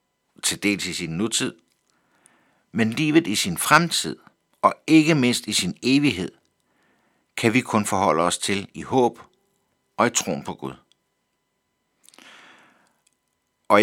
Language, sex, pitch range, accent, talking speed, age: Danish, male, 90-130 Hz, native, 130 wpm, 60-79